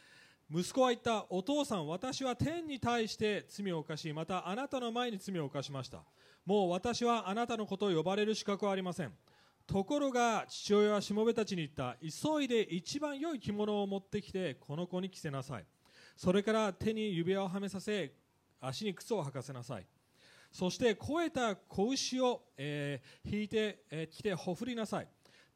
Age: 30-49